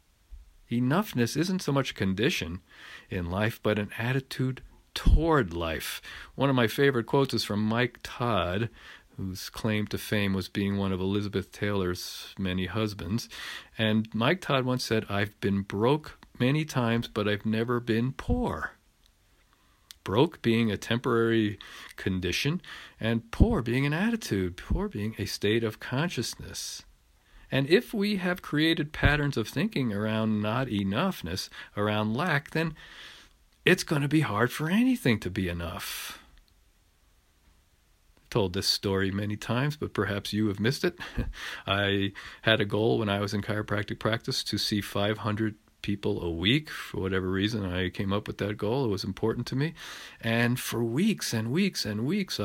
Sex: male